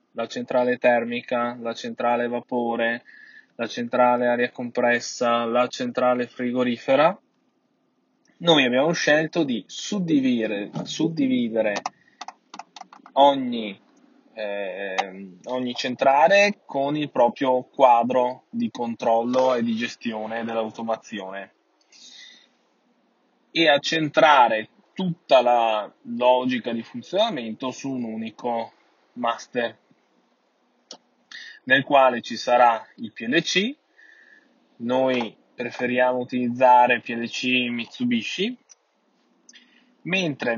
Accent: native